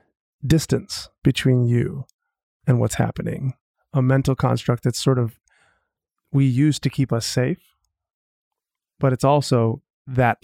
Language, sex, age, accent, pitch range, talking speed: English, male, 30-49, American, 120-145 Hz, 120 wpm